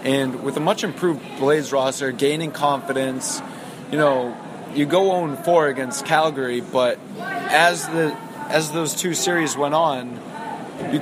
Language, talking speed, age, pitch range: English, 135 wpm, 20-39, 135-160 Hz